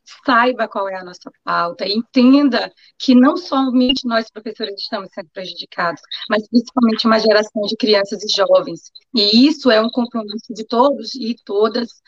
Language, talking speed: Portuguese, 160 wpm